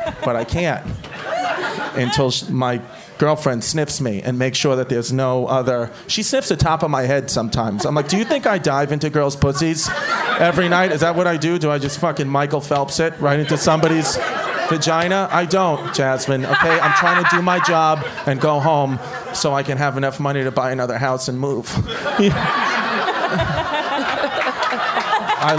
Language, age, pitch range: English, 30-49, 135-165 Hz